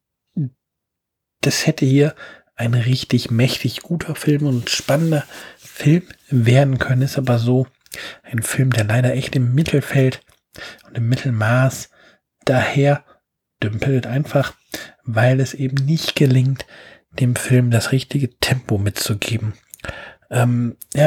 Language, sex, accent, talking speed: German, male, German, 115 wpm